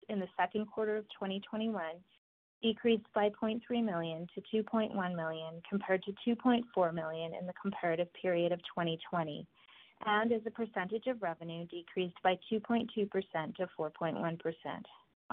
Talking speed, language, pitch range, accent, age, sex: 135 wpm, English, 170-215 Hz, American, 30-49, female